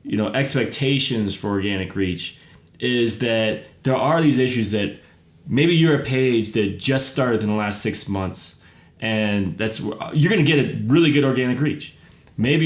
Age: 30-49